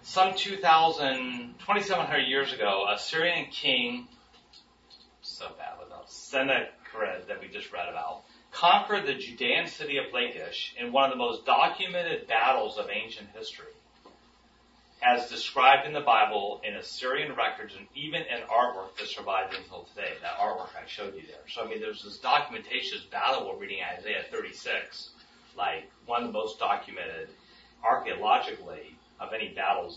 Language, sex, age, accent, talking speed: English, male, 30-49, American, 155 wpm